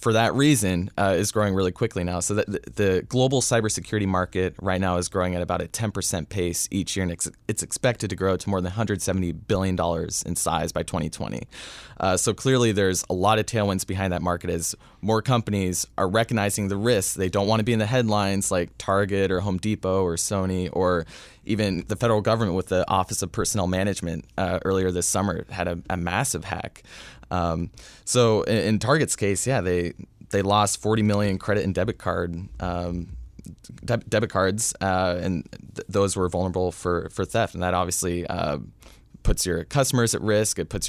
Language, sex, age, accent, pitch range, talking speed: English, male, 20-39, American, 90-110 Hz, 195 wpm